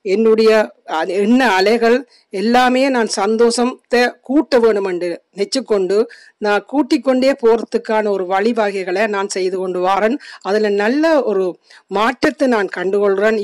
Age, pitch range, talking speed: 50-69, 195-255 Hz, 115 wpm